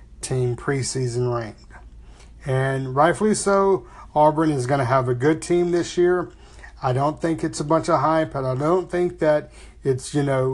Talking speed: 180 wpm